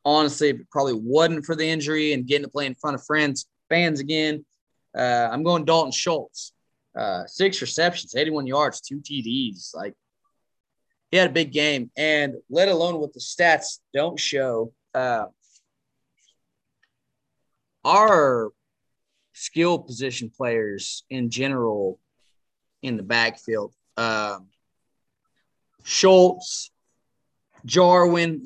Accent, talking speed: American, 120 wpm